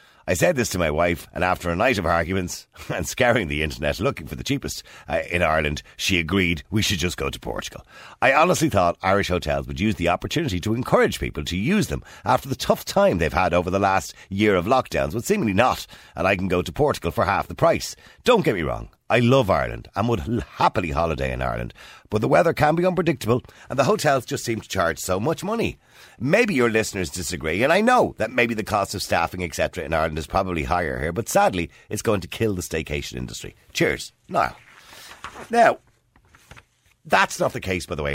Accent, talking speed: Irish, 220 wpm